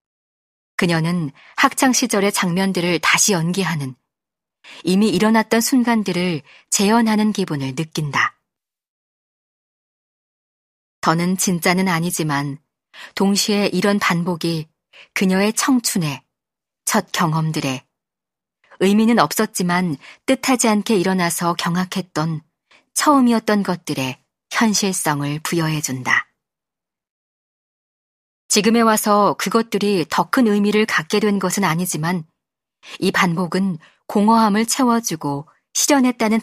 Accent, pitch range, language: native, 160-210 Hz, Korean